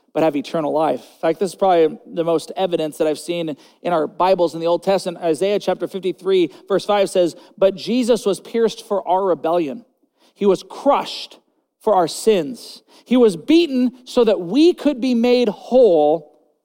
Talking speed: 180 wpm